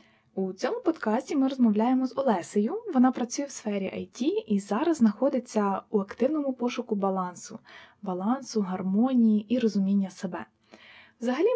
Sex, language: female, Ukrainian